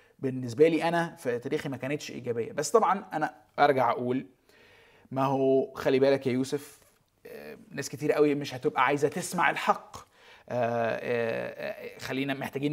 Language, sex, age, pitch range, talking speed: Arabic, male, 20-39, 130-165 Hz, 135 wpm